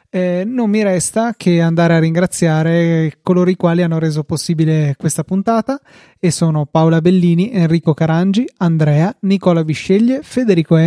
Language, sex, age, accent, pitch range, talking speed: Italian, male, 20-39, native, 160-185 Hz, 145 wpm